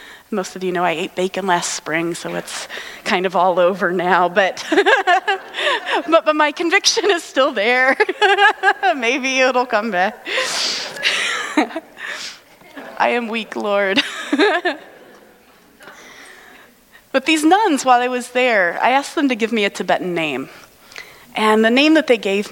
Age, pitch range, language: 30-49, 195-290 Hz, English